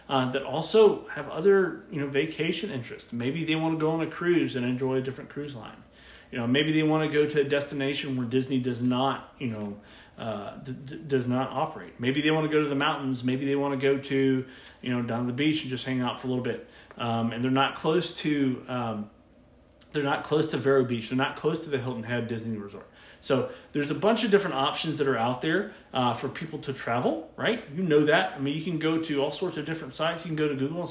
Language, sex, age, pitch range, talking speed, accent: English, male, 30-49, 125-155 Hz, 250 wpm, American